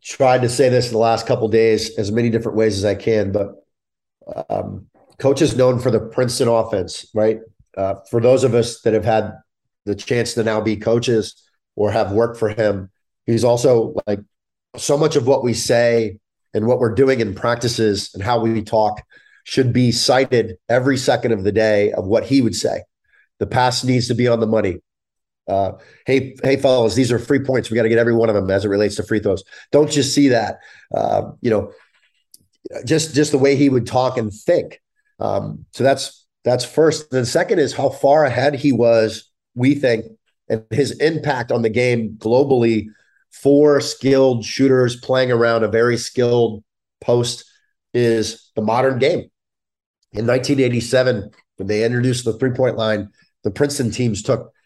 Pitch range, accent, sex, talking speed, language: 110-130 Hz, American, male, 190 wpm, English